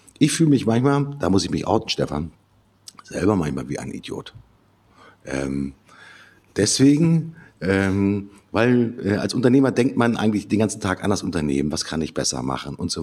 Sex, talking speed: male, 175 wpm